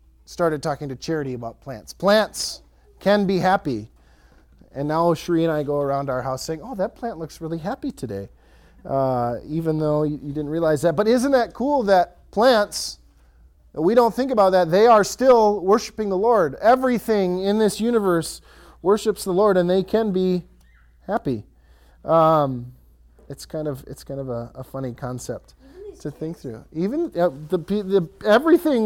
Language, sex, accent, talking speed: English, male, American, 170 wpm